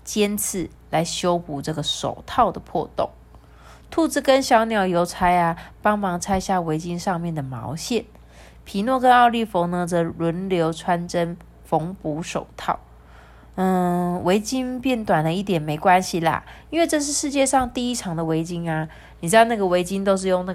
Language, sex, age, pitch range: Chinese, female, 20-39, 155-205 Hz